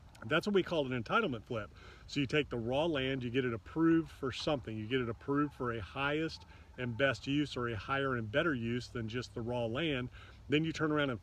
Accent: American